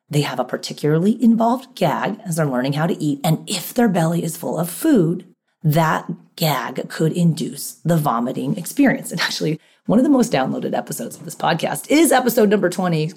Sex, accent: female, American